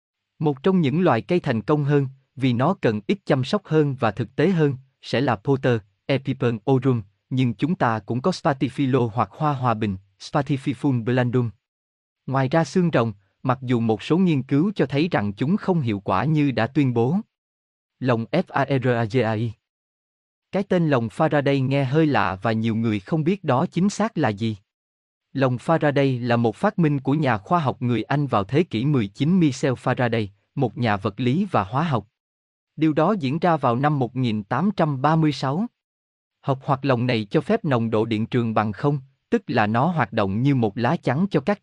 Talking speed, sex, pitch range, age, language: 185 wpm, male, 115-155 Hz, 20-39, Vietnamese